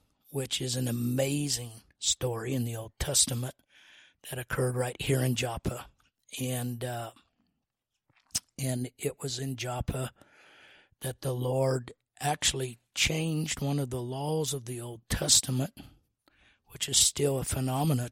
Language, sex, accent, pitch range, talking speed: English, male, American, 120-135 Hz, 135 wpm